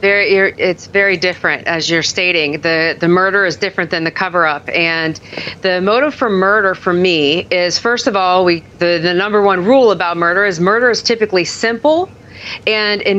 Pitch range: 185-245 Hz